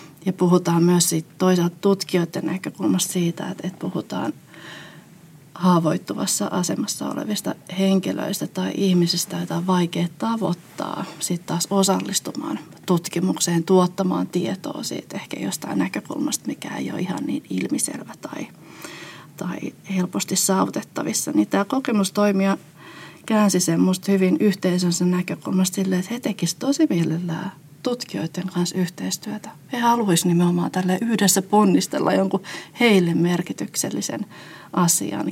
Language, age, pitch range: Finnish, 30-49, 170-200 Hz